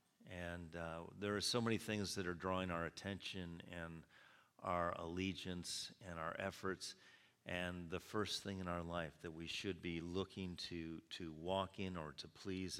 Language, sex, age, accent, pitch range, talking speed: English, male, 50-69, American, 85-100 Hz, 175 wpm